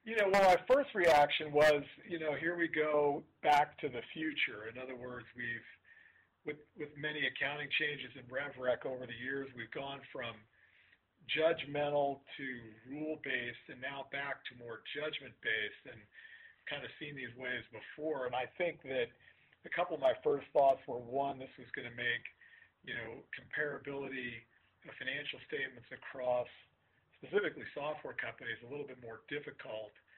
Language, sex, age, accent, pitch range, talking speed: English, male, 50-69, American, 125-160 Hz, 160 wpm